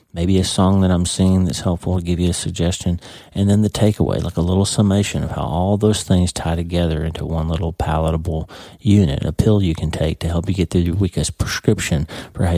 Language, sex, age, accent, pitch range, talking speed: English, male, 40-59, American, 85-110 Hz, 230 wpm